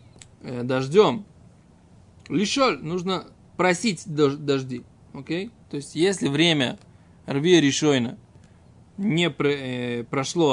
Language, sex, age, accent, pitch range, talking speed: Russian, male, 20-39, native, 140-195 Hz, 95 wpm